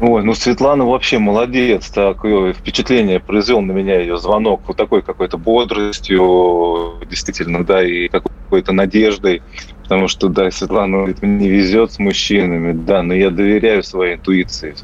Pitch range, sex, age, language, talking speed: 95-110 Hz, male, 20-39, Russian, 145 wpm